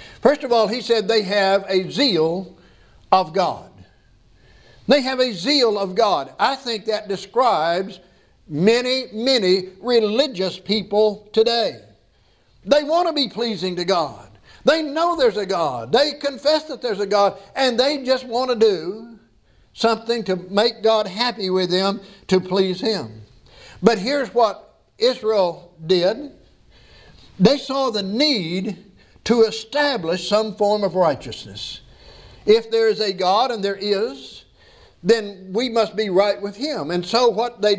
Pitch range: 160-235 Hz